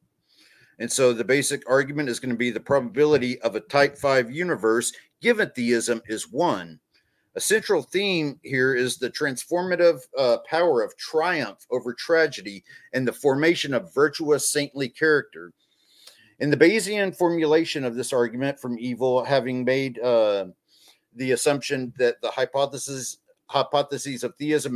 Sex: male